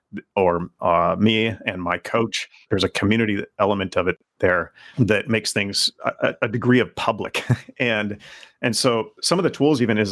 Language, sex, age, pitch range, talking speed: English, male, 30-49, 95-115 Hz, 180 wpm